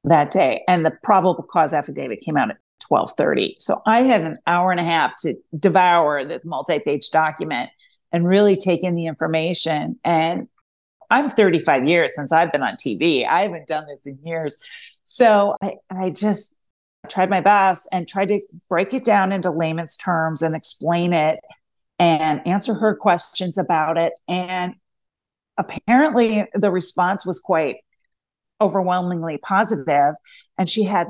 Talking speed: 155 wpm